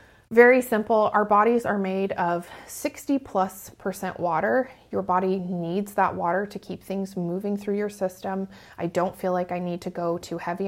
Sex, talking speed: female, 185 wpm